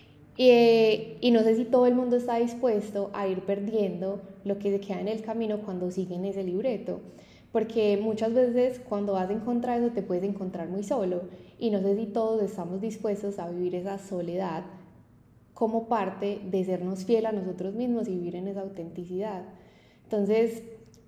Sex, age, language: female, 10-29, Spanish